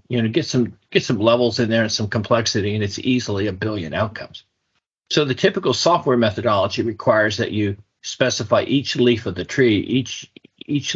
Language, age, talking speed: English, 50-69, 185 wpm